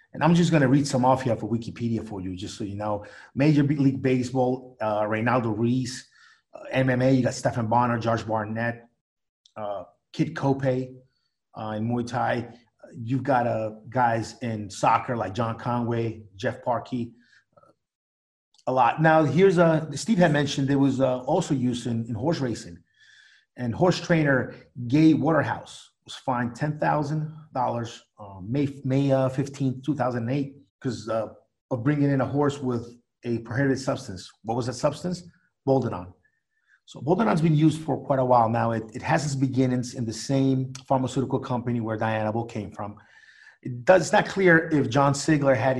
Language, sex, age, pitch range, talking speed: English, male, 30-49, 115-140 Hz, 165 wpm